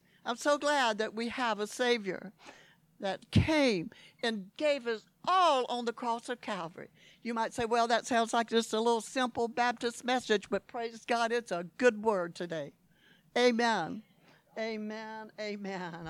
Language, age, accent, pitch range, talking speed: English, 60-79, American, 205-275 Hz, 160 wpm